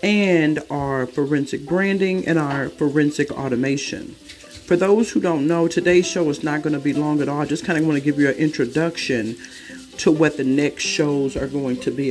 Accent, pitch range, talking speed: American, 140-175 Hz, 210 wpm